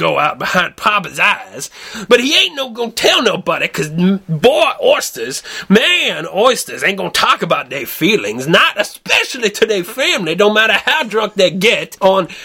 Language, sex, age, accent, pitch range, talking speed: English, male, 30-49, American, 205-335 Hz, 170 wpm